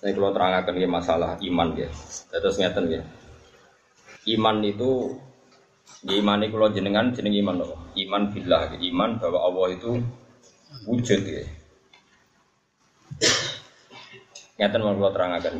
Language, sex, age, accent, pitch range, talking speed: Indonesian, male, 20-39, native, 100-130 Hz, 115 wpm